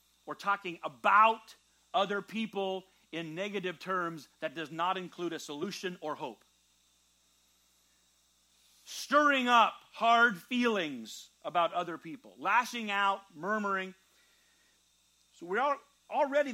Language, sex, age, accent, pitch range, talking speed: English, male, 40-59, American, 155-215 Hz, 110 wpm